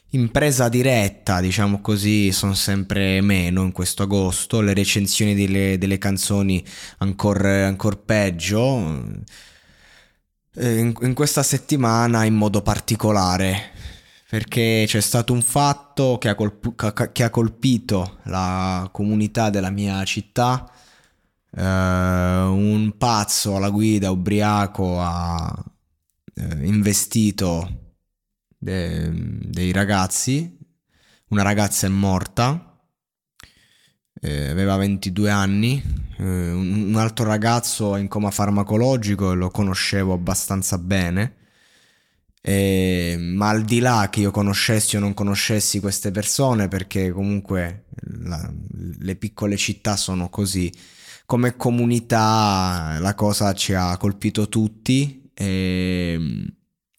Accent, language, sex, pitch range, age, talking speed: native, Italian, male, 95-110 Hz, 20-39, 105 wpm